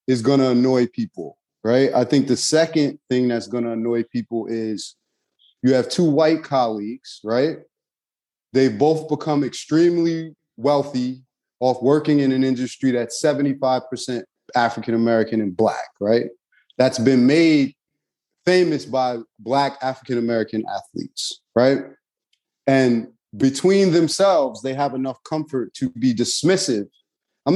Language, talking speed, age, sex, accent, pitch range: English, 130 wpm, 30-49, male, American, 120-160 Hz